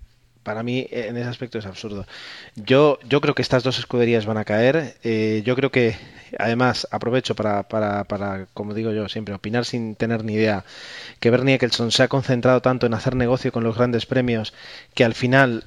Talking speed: 200 wpm